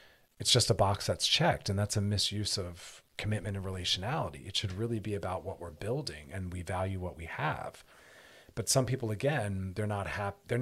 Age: 40-59